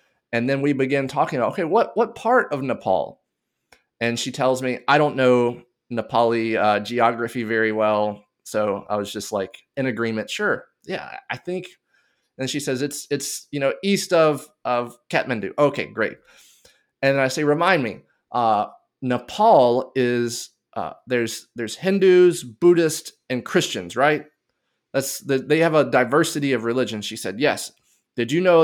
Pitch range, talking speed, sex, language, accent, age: 115-145 Hz, 165 wpm, male, English, American, 20-39